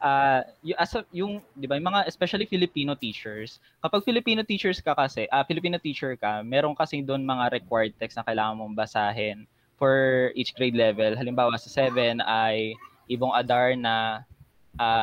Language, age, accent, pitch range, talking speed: Filipino, 20-39, native, 120-160 Hz, 175 wpm